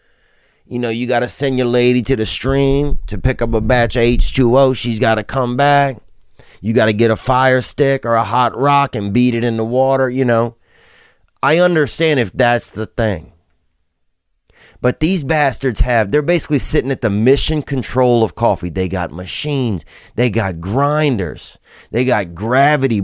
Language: English